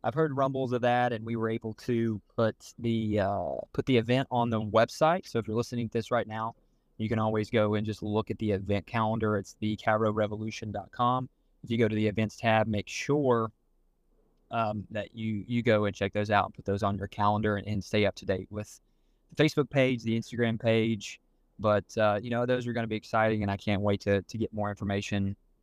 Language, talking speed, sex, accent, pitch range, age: English, 225 wpm, male, American, 105-125 Hz, 20-39